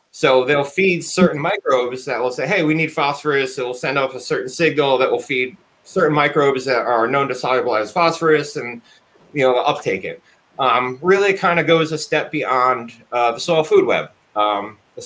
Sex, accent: male, American